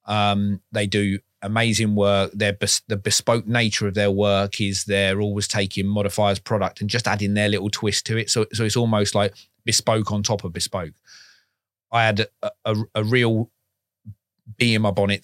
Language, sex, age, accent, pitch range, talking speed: English, male, 30-49, British, 100-110 Hz, 185 wpm